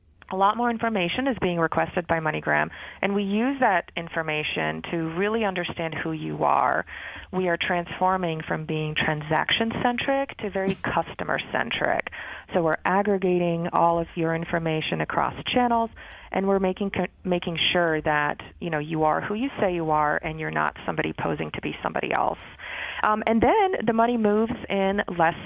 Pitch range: 160-200 Hz